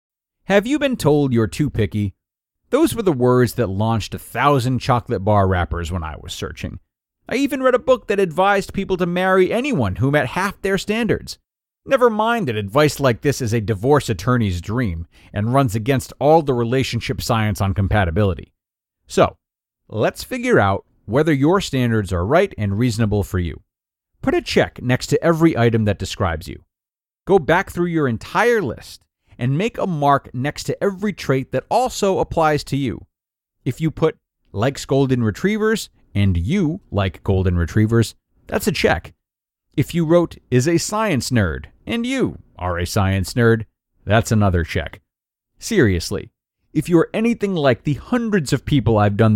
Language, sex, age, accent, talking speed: English, male, 40-59, American, 170 wpm